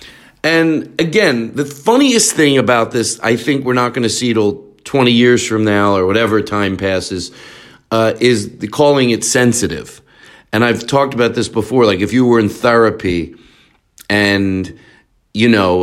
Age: 40-59